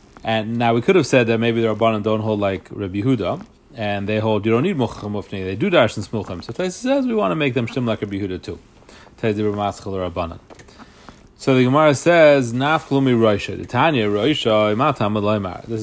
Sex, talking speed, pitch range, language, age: male, 170 wpm, 105-130 Hz, English, 30-49